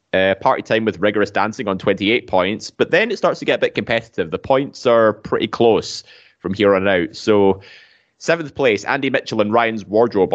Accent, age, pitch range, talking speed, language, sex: British, 20-39, 105-125 Hz, 205 wpm, English, male